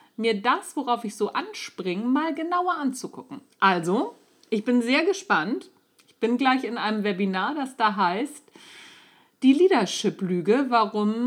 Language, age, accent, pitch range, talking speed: German, 40-59, German, 205-275 Hz, 140 wpm